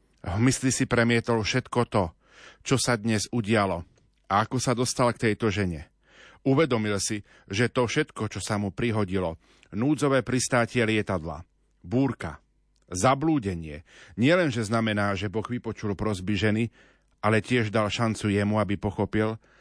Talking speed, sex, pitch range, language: 140 wpm, male, 95-120 Hz, Slovak